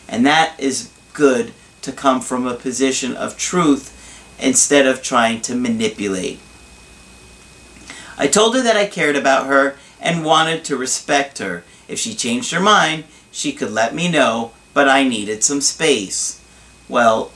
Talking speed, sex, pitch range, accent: 155 wpm, male, 125-180 Hz, American